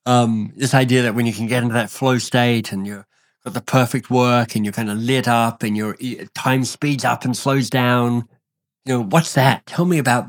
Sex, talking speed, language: male, 225 wpm, English